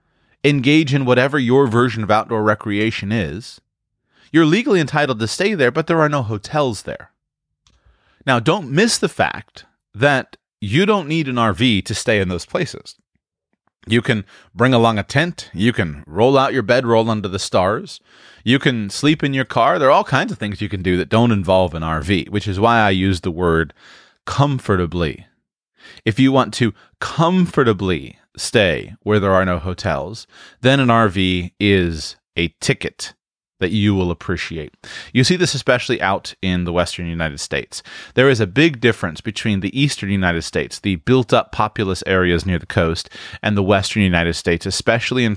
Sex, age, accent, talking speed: male, 30-49, American, 180 wpm